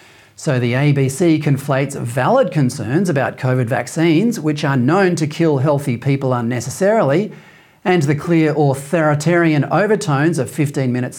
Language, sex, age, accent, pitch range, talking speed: English, male, 40-59, Australian, 135-175 Hz, 130 wpm